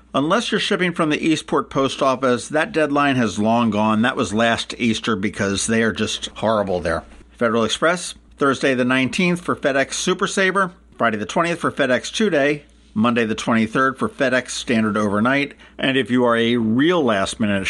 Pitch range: 110-155 Hz